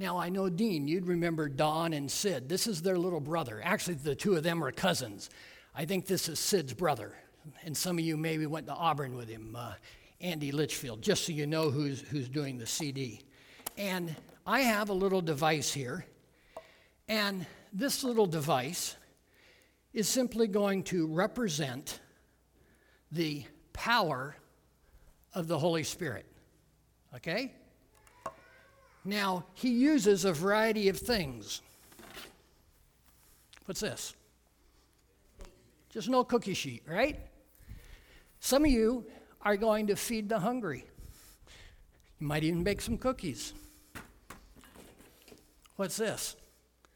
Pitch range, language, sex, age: 150-210 Hz, English, male, 60-79